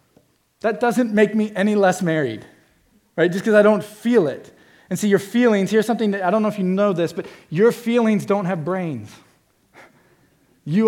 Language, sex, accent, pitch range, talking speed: English, male, American, 150-200 Hz, 195 wpm